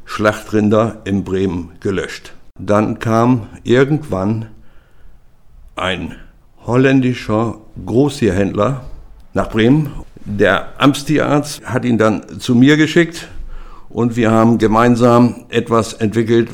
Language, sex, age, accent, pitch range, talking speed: German, male, 60-79, German, 105-135 Hz, 95 wpm